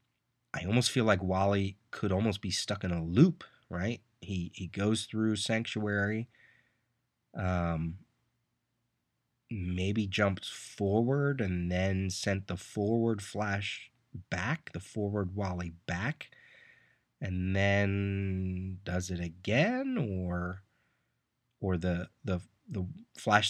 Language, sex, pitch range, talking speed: English, male, 90-115 Hz, 110 wpm